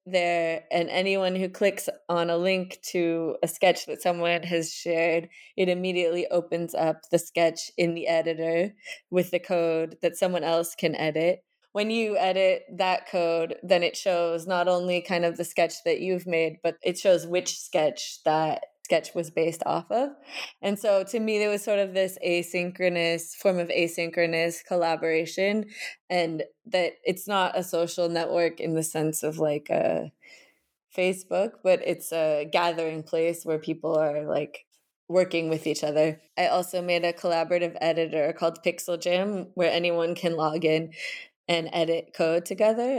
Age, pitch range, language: 20-39, 165-185 Hz, English